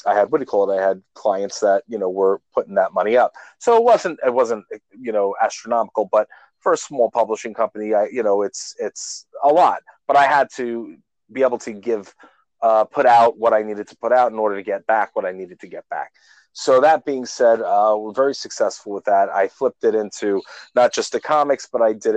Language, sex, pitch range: English, male, 105-155 Hz